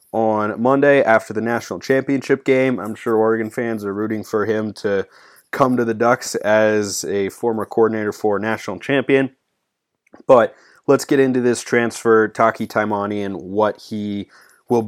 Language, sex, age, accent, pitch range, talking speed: English, male, 30-49, American, 105-120 Hz, 155 wpm